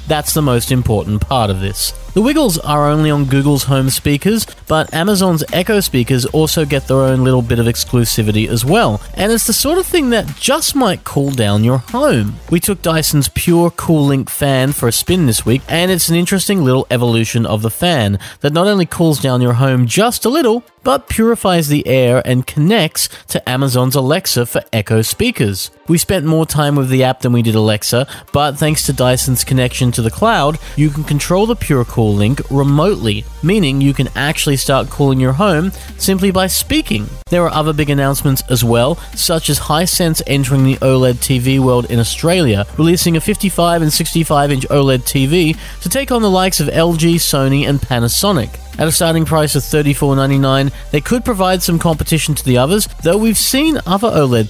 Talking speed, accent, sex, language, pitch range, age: 195 wpm, Australian, male, English, 125-170 Hz, 30-49